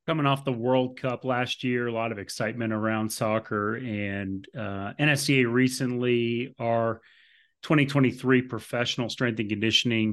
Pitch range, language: 110-130 Hz, English